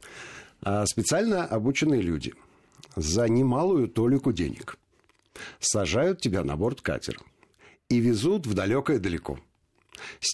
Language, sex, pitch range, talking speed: Russian, male, 90-135 Hz, 110 wpm